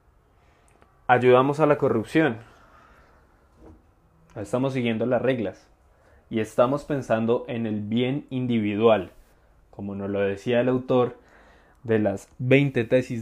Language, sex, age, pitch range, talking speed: Spanish, male, 20-39, 95-130 Hz, 115 wpm